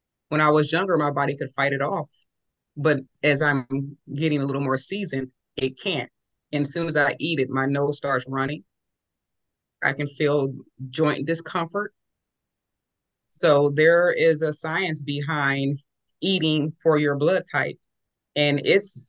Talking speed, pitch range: 155 wpm, 140-160 Hz